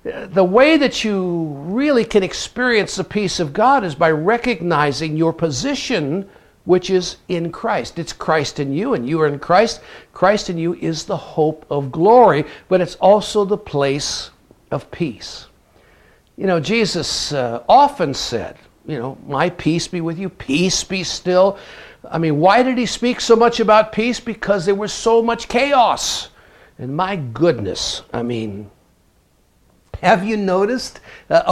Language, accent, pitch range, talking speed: English, American, 150-210 Hz, 160 wpm